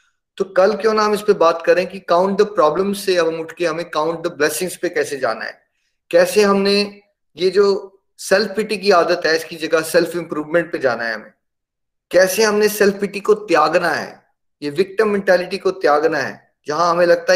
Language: Hindi